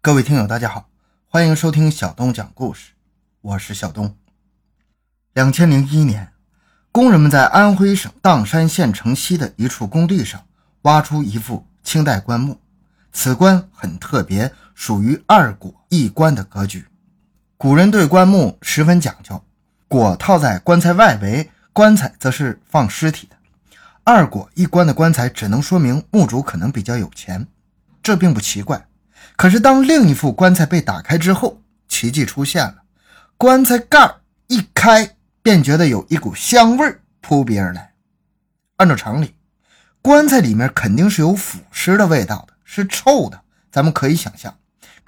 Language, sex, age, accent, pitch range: Chinese, male, 20-39, native, 125-190 Hz